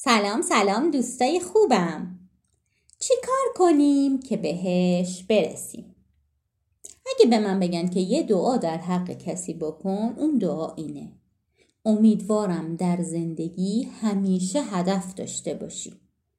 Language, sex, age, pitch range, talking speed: Persian, female, 30-49, 180-265 Hz, 110 wpm